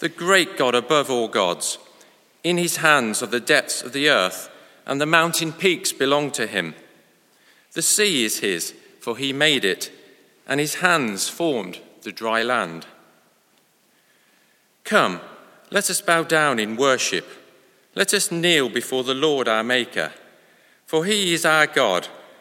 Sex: male